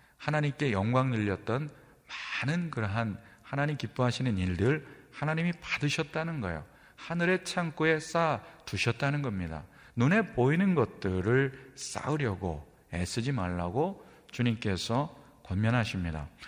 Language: Korean